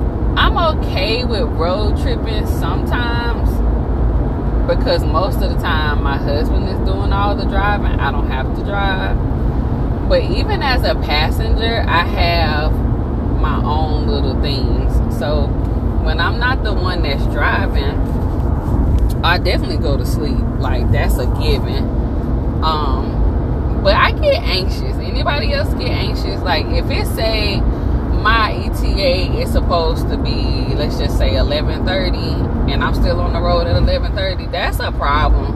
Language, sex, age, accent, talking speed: English, female, 20-39, American, 140 wpm